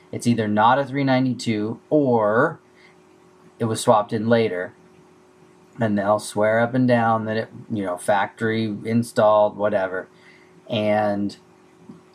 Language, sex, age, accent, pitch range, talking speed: English, male, 30-49, American, 105-125 Hz, 125 wpm